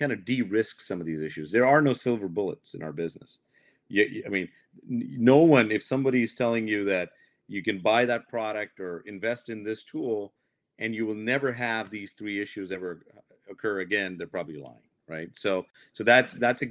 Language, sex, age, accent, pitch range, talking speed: English, male, 40-59, American, 100-135 Hz, 200 wpm